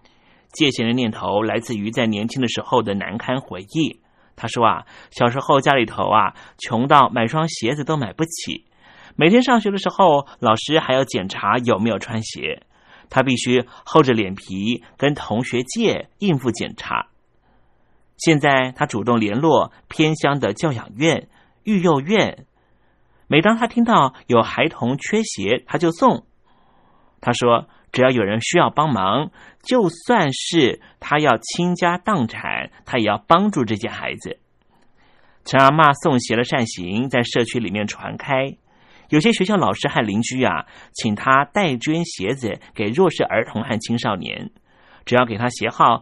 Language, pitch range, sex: Chinese, 115-165 Hz, male